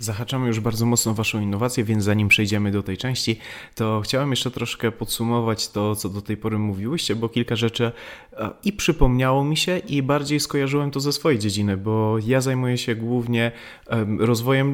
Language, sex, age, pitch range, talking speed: Polish, male, 30-49, 110-135 Hz, 175 wpm